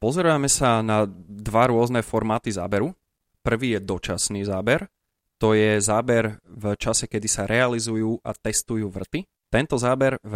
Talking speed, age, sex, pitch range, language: 145 wpm, 20-39, male, 100-115 Hz, Slovak